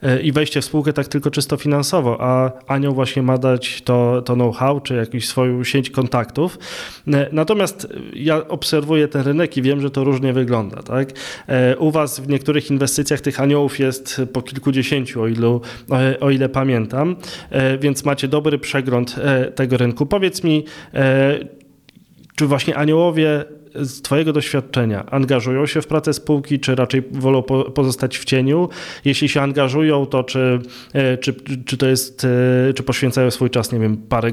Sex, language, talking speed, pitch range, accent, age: male, Polish, 155 wpm, 125-145 Hz, native, 20-39